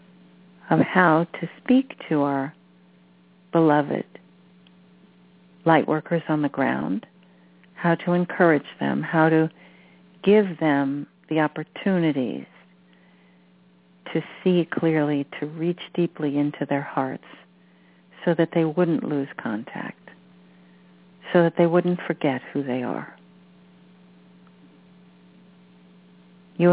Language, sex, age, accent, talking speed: English, female, 50-69, American, 105 wpm